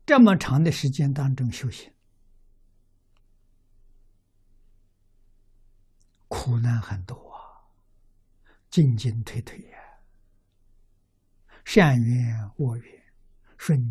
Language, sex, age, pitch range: Chinese, male, 60-79, 100-125 Hz